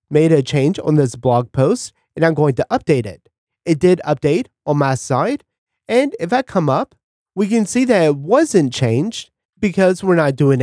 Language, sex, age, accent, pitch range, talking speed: English, male, 30-49, American, 135-205 Hz, 200 wpm